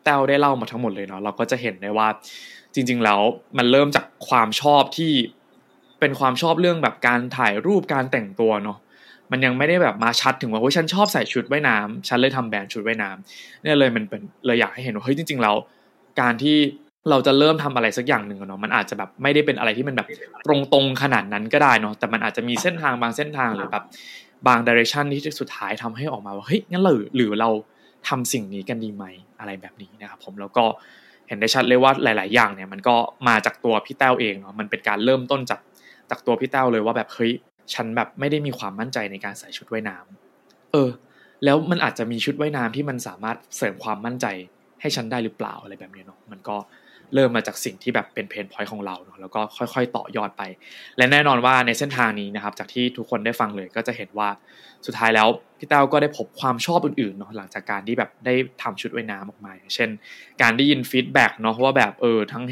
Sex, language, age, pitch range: male, Thai, 20-39, 110-135 Hz